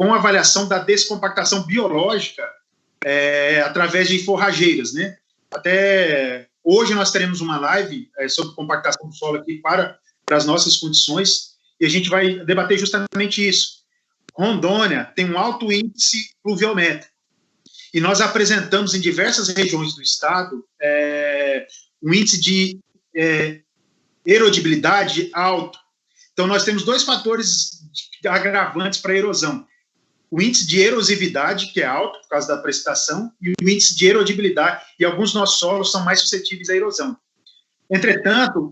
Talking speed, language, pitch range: 140 wpm, Portuguese, 170-210 Hz